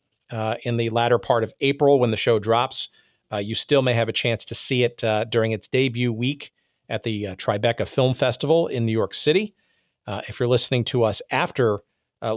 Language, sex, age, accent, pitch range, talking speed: English, male, 40-59, American, 110-125 Hz, 215 wpm